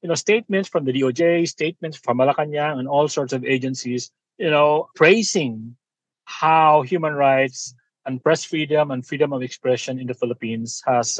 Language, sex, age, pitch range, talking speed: Filipino, male, 30-49, 135-195 Hz, 165 wpm